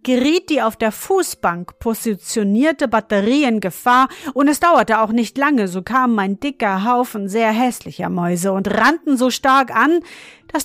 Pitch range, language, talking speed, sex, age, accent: 195-255 Hz, German, 165 wpm, female, 40-59, German